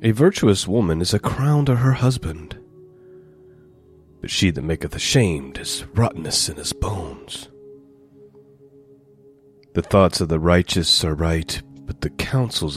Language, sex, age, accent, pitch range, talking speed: English, male, 40-59, American, 85-135 Hz, 135 wpm